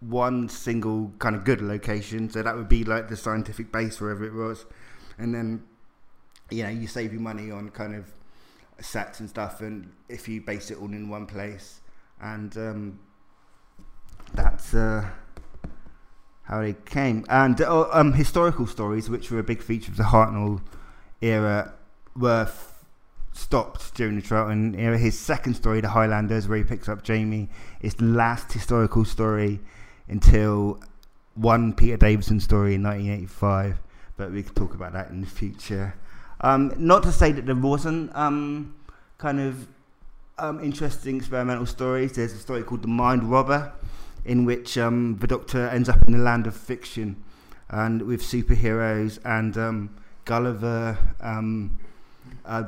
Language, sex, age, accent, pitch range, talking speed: English, male, 20-39, British, 105-120 Hz, 160 wpm